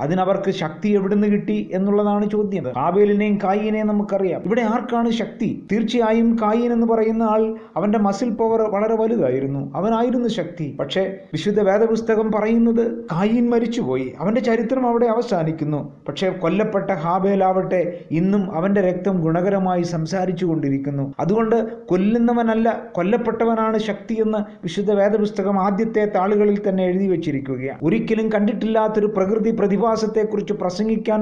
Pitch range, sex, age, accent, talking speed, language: 180-220 Hz, male, 30-49, native, 110 wpm, Malayalam